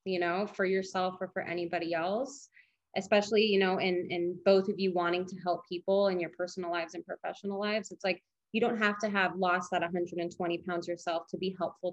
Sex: female